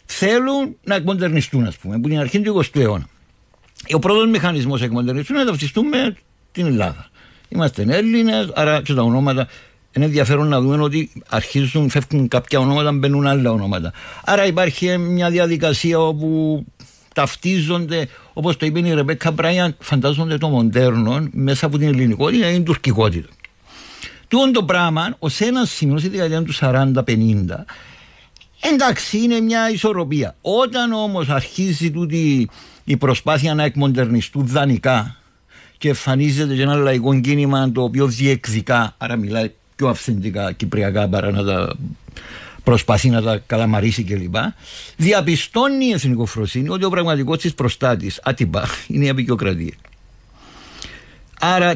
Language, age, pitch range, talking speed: Greek, 60-79, 120-165 Hz, 135 wpm